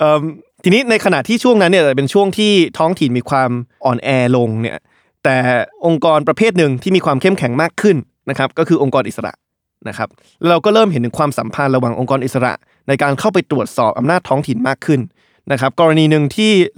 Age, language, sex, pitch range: 20-39, Thai, male, 130-165 Hz